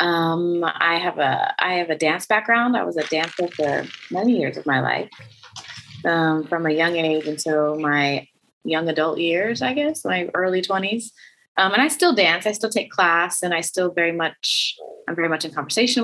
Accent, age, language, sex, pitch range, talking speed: American, 20-39, English, female, 155-180 Hz, 200 wpm